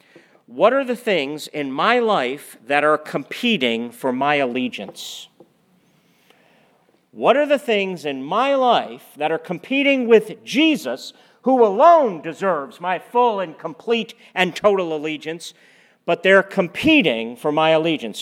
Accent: American